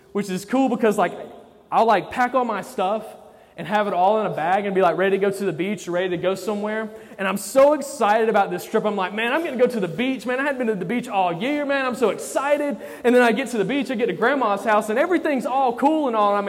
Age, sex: 20-39, male